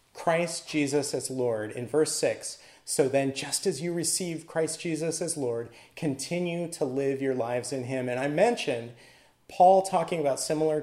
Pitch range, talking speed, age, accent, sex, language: 130-165 Hz, 170 wpm, 30-49, American, male, English